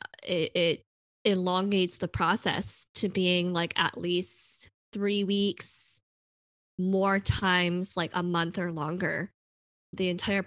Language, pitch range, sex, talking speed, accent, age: English, 165-185 Hz, female, 120 wpm, American, 20-39